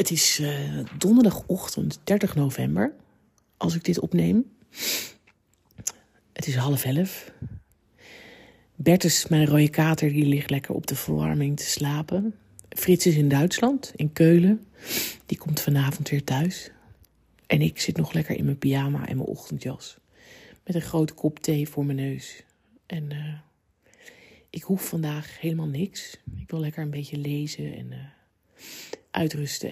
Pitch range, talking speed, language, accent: 145-185 Hz, 145 wpm, Dutch, Dutch